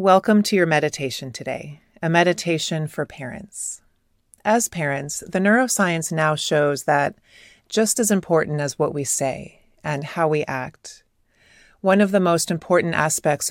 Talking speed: 145 wpm